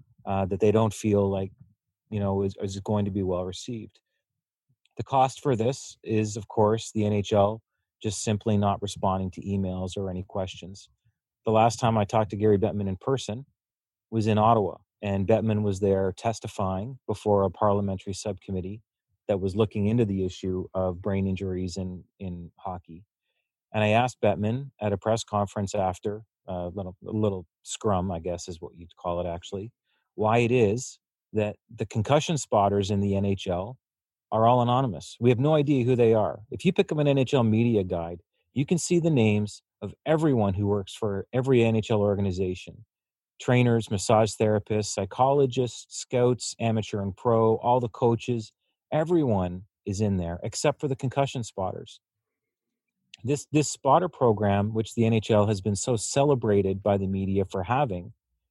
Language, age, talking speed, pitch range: English, 30-49, 170 wpm, 95-115 Hz